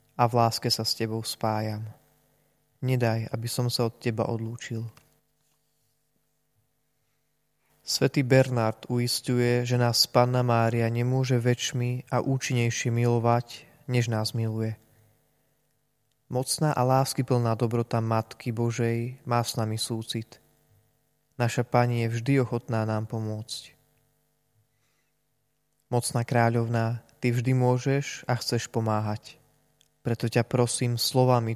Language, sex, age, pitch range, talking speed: Slovak, male, 20-39, 115-135 Hz, 110 wpm